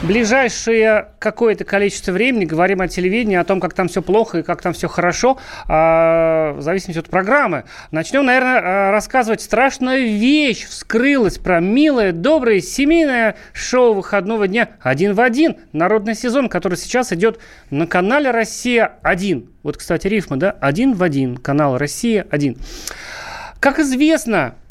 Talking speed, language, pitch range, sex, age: 145 wpm, Russian, 175-245 Hz, male, 30-49